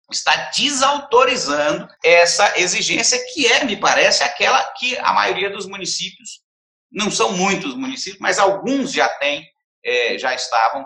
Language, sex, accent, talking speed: Portuguese, male, Brazilian, 140 wpm